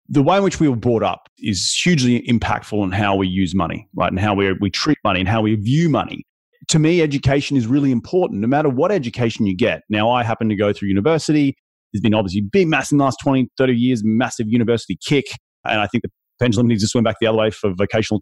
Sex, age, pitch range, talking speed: male, 30-49, 110-135 Hz, 245 wpm